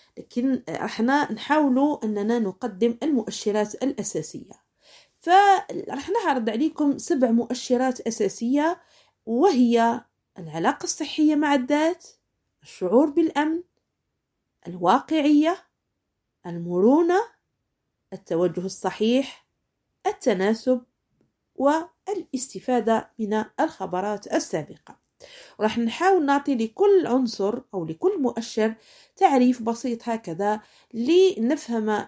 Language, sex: Arabic, female